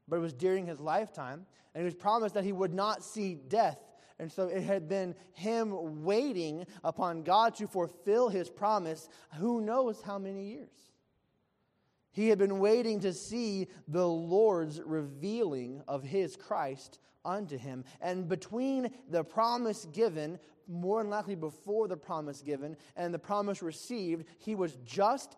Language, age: English, 20-39